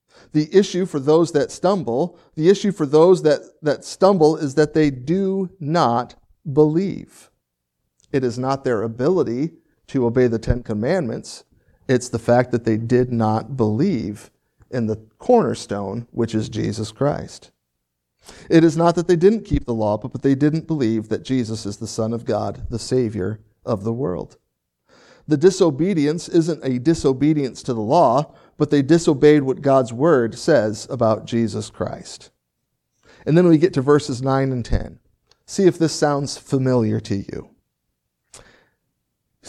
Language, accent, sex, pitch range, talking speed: English, American, male, 115-165 Hz, 160 wpm